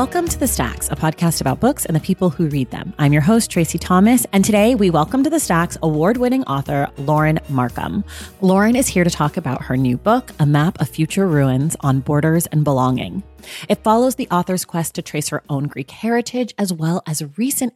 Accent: American